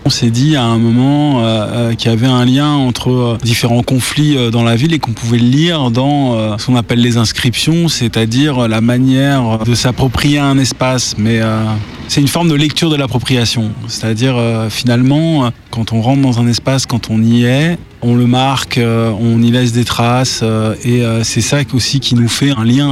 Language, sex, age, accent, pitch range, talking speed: French, male, 20-39, French, 115-135 Hz, 210 wpm